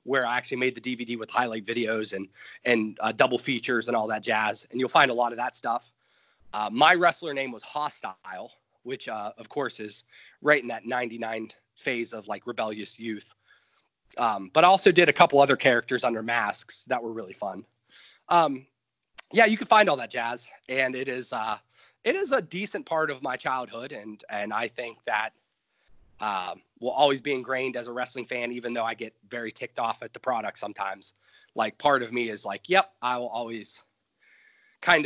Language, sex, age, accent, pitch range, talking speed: English, male, 30-49, American, 115-145 Hz, 200 wpm